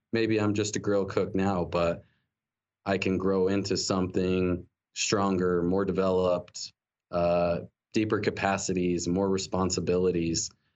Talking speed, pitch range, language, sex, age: 115 wpm, 95-110 Hz, English, male, 20-39